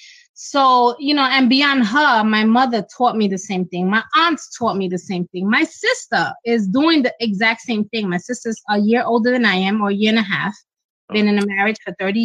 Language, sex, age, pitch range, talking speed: English, female, 20-39, 200-245 Hz, 235 wpm